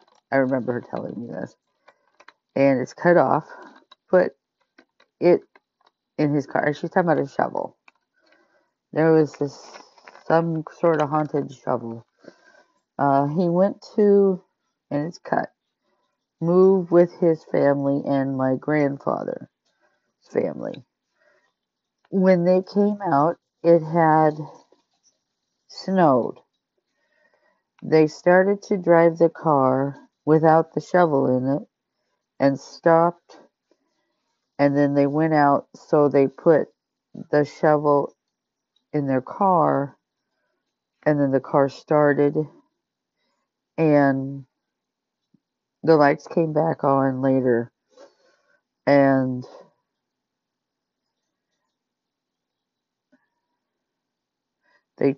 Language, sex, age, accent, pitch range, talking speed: English, female, 50-69, American, 140-170 Hz, 100 wpm